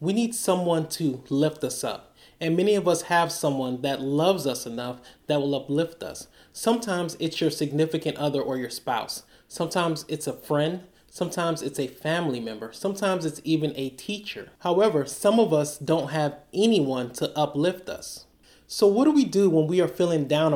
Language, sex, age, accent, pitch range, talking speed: English, male, 30-49, American, 140-175 Hz, 185 wpm